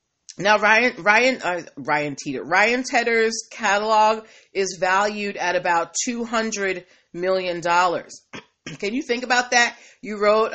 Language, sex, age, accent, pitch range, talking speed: English, female, 30-49, American, 180-235 Hz, 125 wpm